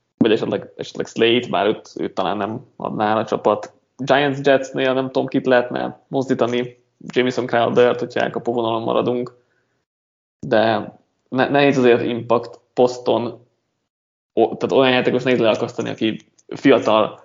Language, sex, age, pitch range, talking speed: Hungarian, male, 20-39, 115-130 Hz, 135 wpm